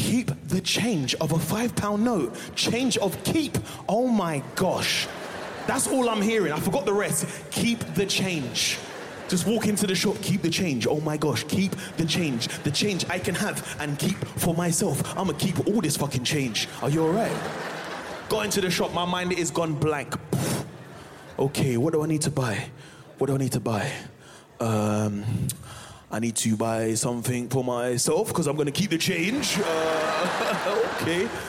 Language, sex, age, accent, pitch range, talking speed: English, male, 20-39, British, 150-215 Hz, 190 wpm